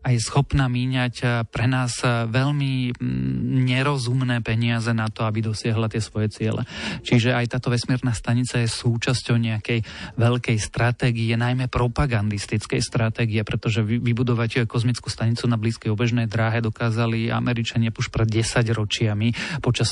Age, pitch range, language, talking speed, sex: 30-49, 115-125 Hz, Slovak, 135 wpm, male